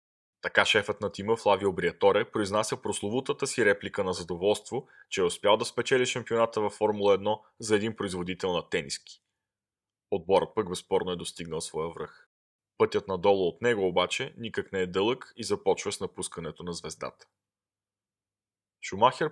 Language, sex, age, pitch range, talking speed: Bulgarian, male, 20-39, 95-125 Hz, 150 wpm